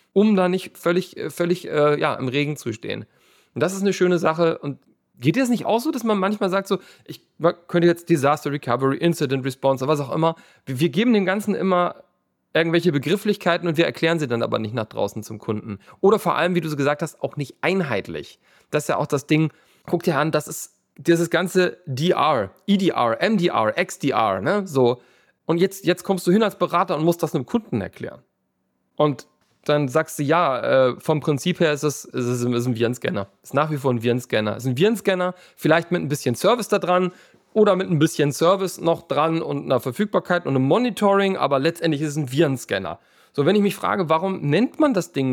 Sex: male